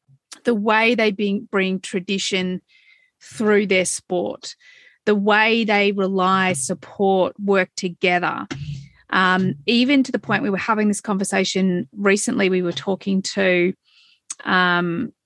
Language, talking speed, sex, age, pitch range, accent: English, 120 wpm, female, 30-49, 190-220 Hz, Australian